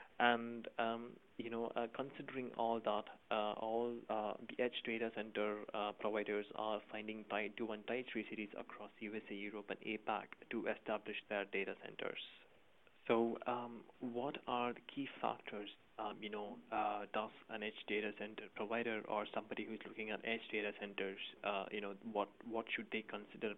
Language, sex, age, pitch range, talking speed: English, male, 20-39, 105-115 Hz, 175 wpm